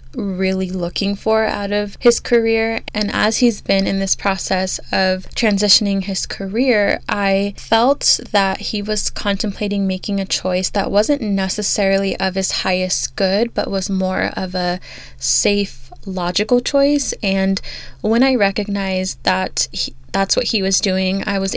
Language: English